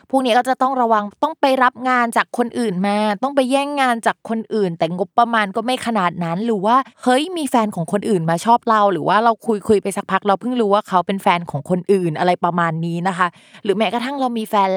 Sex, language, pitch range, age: female, Thai, 180-230 Hz, 20-39